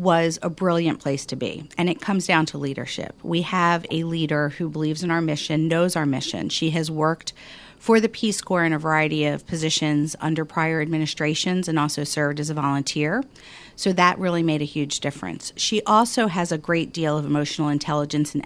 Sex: female